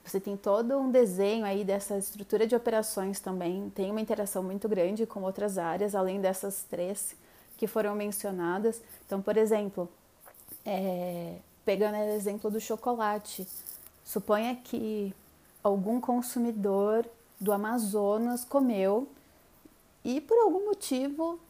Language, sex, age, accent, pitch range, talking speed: Portuguese, female, 30-49, Brazilian, 195-240 Hz, 125 wpm